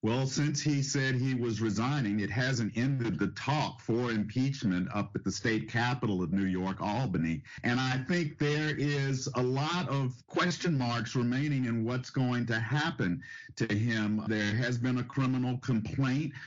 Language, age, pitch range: English, 50-69, 115-135 Hz